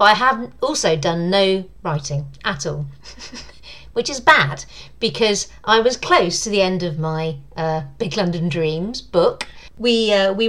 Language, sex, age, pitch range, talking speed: English, female, 40-59, 165-220 Hz, 165 wpm